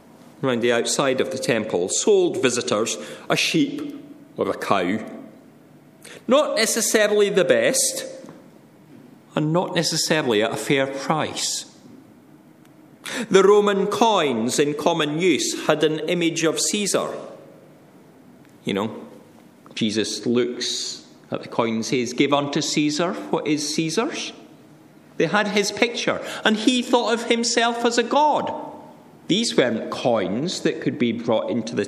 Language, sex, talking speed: English, male, 135 wpm